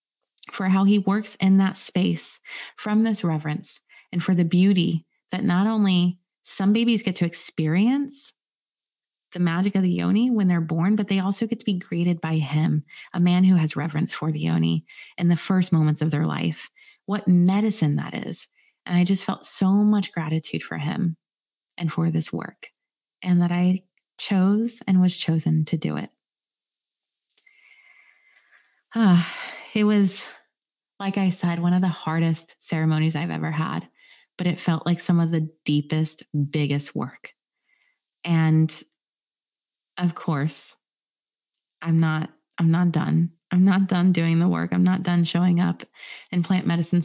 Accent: American